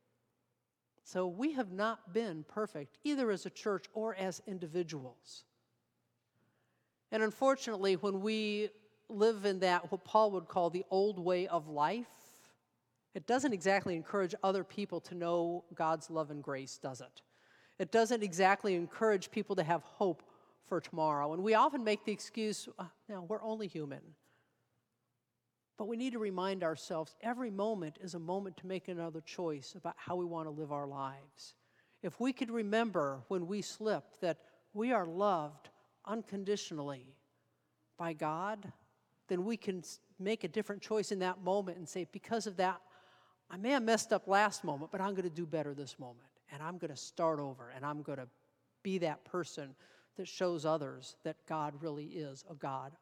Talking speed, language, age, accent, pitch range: 170 wpm, English, 50-69, American, 155-205 Hz